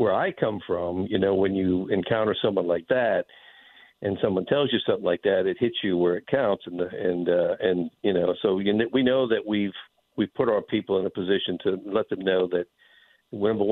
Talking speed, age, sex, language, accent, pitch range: 225 wpm, 50-69, male, English, American, 90-110 Hz